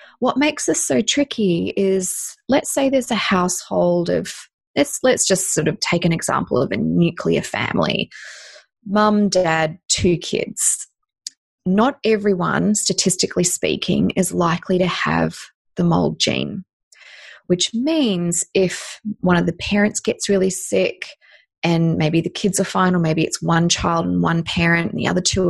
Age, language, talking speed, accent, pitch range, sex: 20-39, English, 160 wpm, Australian, 170-205 Hz, female